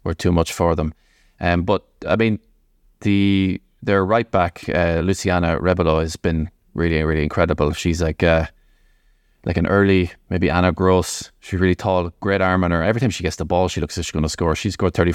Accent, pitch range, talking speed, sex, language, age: Irish, 85-100 Hz, 215 wpm, male, English, 20-39